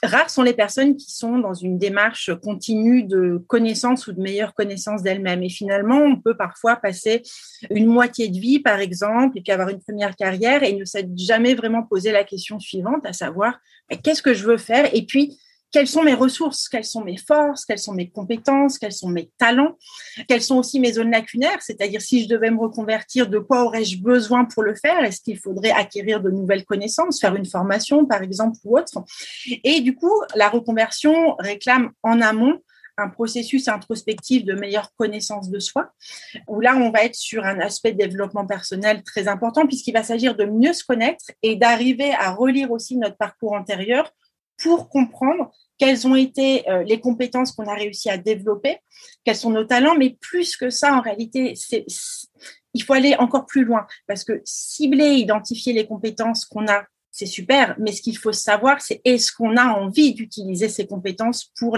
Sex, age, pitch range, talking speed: female, 30-49, 205-255 Hz, 190 wpm